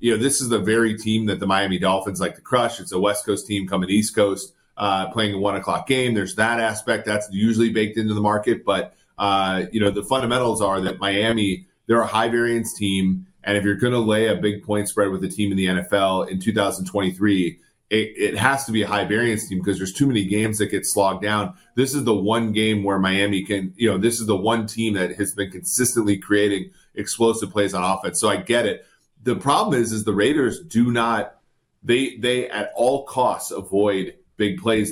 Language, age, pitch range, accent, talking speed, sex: English, 30-49, 95-110 Hz, American, 220 wpm, male